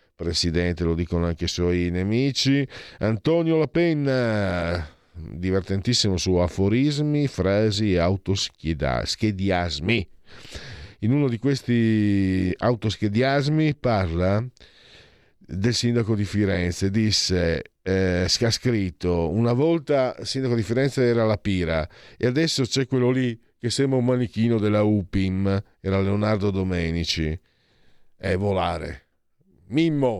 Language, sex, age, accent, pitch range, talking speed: Italian, male, 50-69, native, 90-135 Hz, 110 wpm